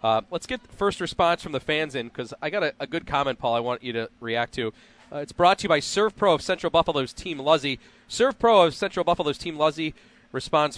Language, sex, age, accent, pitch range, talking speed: English, male, 30-49, American, 130-175 Hz, 250 wpm